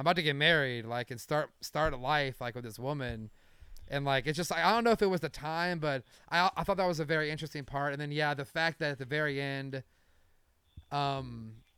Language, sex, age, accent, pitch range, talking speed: English, male, 30-49, American, 120-155 Hz, 245 wpm